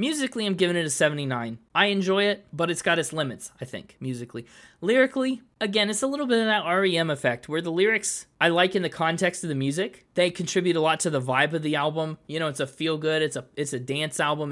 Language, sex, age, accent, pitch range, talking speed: English, male, 20-39, American, 140-185 Hz, 250 wpm